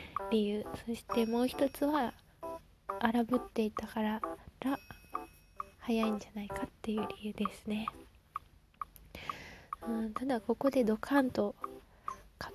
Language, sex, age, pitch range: Japanese, female, 20-39, 220-255 Hz